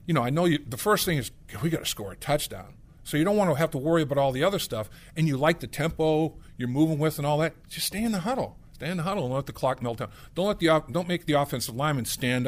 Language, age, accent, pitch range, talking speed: English, 50-69, American, 115-155 Hz, 305 wpm